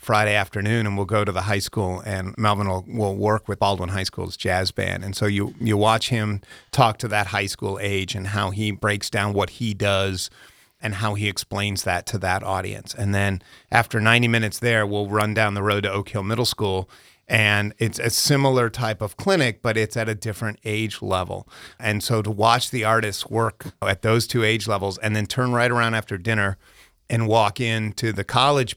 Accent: American